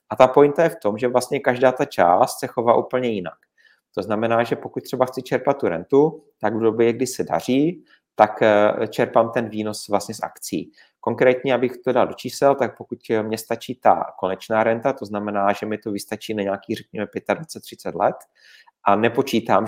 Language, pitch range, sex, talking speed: Czech, 105-125 Hz, male, 190 wpm